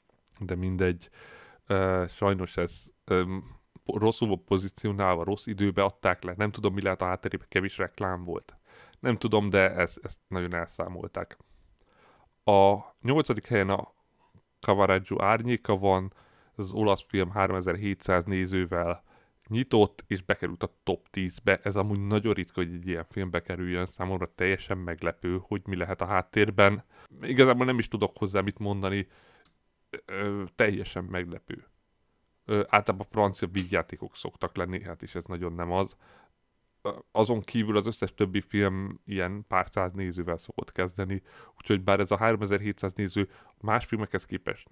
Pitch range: 90-105 Hz